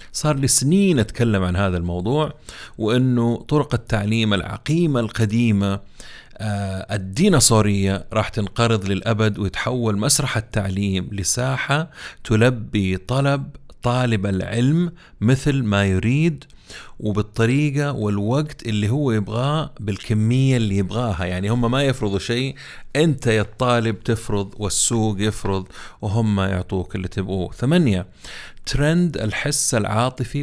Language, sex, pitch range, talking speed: Arabic, male, 100-130 Hz, 110 wpm